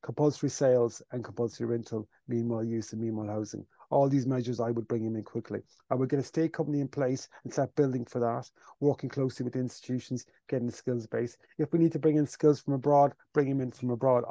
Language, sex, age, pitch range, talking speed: English, male, 30-49, 125-160 Hz, 225 wpm